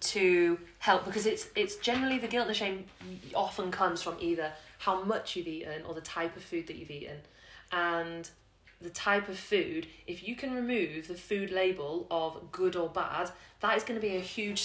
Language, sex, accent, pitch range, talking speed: English, female, British, 170-205 Hz, 205 wpm